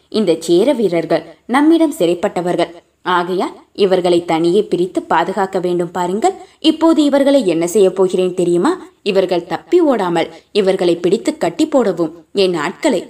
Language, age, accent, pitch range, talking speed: Tamil, 20-39, native, 175-280 Hz, 125 wpm